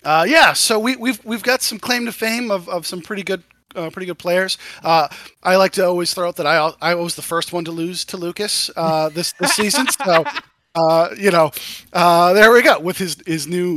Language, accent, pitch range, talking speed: English, American, 155-215 Hz, 235 wpm